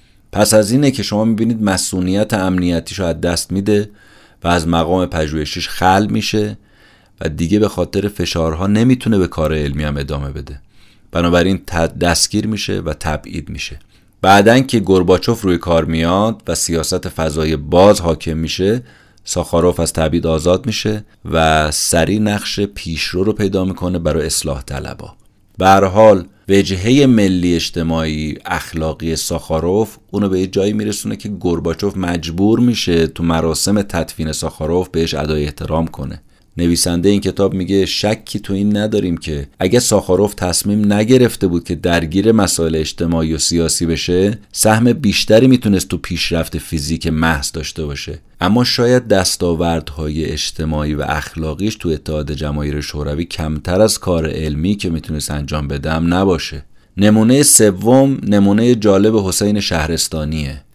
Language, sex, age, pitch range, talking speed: Persian, male, 30-49, 80-105 Hz, 140 wpm